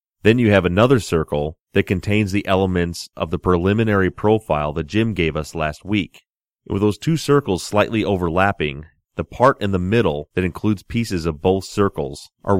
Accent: American